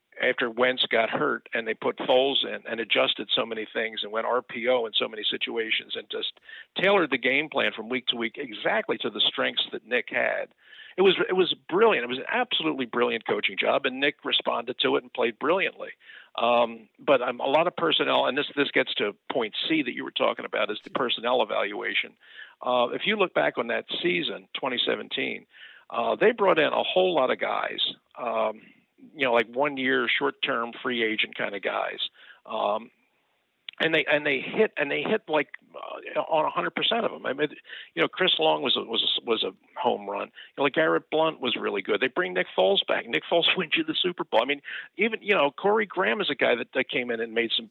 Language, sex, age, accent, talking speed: English, male, 50-69, American, 225 wpm